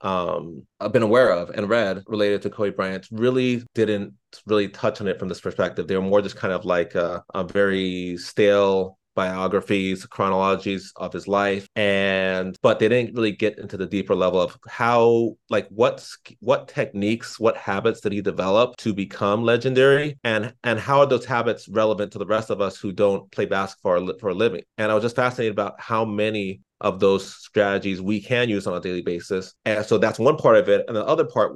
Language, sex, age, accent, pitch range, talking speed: English, male, 30-49, American, 95-115 Hz, 205 wpm